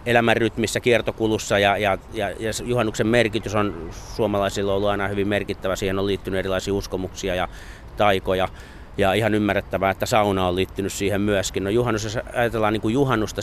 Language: Finnish